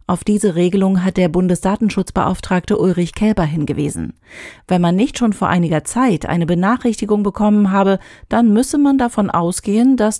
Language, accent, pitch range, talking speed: German, German, 175-220 Hz, 155 wpm